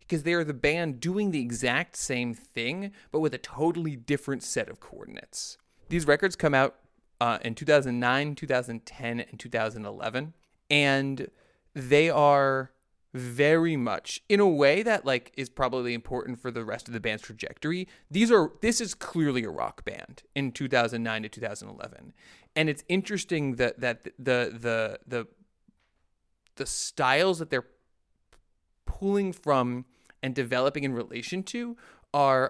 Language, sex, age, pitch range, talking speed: English, male, 30-49, 125-160 Hz, 150 wpm